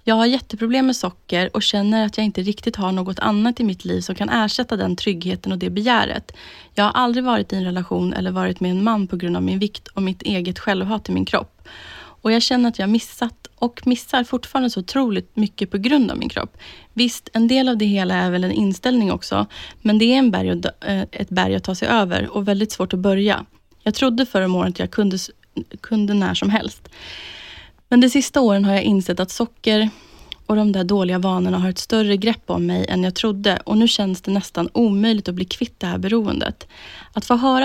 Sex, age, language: female, 20-39, Swedish